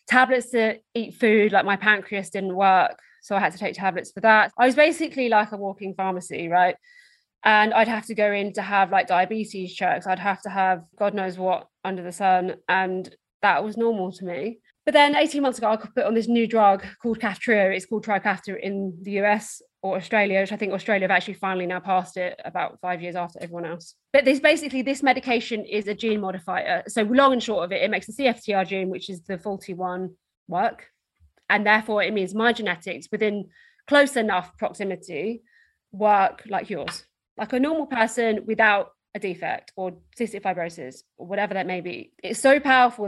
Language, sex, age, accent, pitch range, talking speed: English, female, 20-39, British, 190-230 Hz, 205 wpm